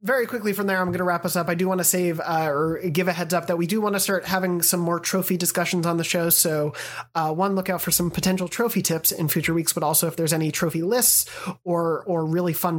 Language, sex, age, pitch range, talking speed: English, male, 30-49, 160-185 Hz, 275 wpm